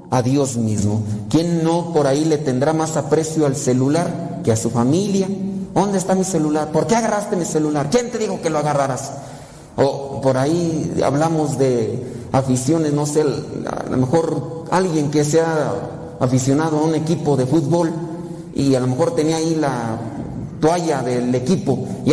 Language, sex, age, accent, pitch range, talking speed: Spanish, male, 40-59, Mexican, 135-175 Hz, 170 wpm